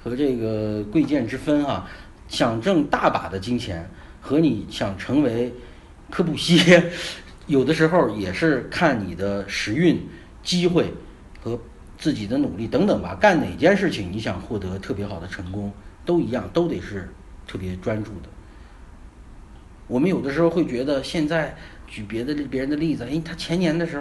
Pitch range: 105-165 Hz